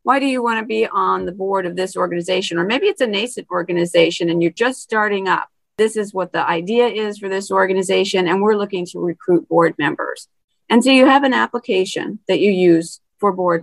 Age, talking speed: 40-59, 220 wpm